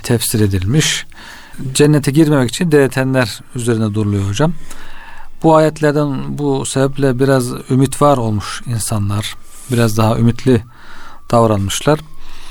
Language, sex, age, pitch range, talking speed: Turkish, male, 40-59, 115-135 Hz, 105 wpm